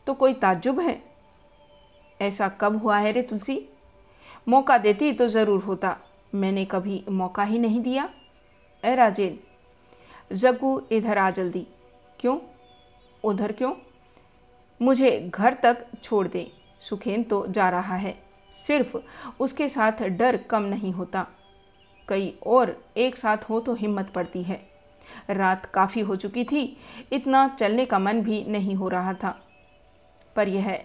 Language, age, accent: Hindi, 50-69, native